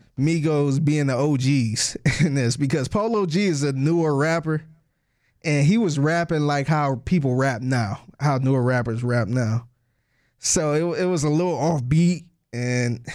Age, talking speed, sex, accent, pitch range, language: 20-39, 165 wpm, male, American, 125-155 Hz, English